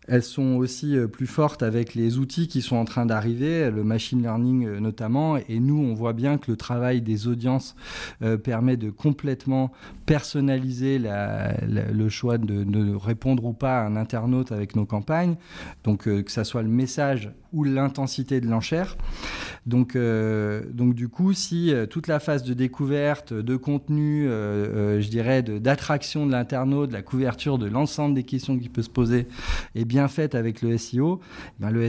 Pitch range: 110-145 Hz